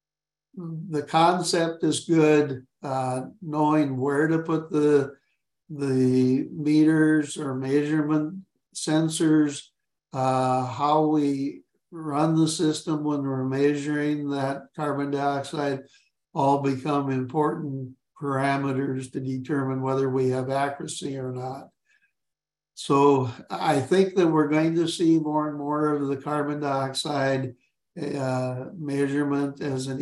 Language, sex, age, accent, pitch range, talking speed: English, male, 60-79, American, 135-155 Hz, 120 wpm